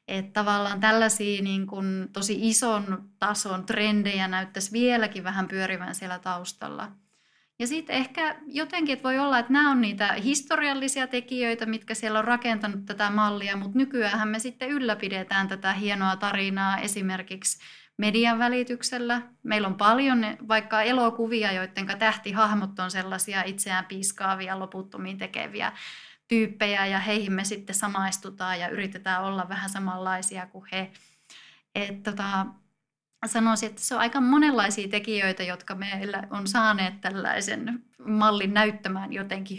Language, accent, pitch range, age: Finnish, native, 195-225 Hz, 30-49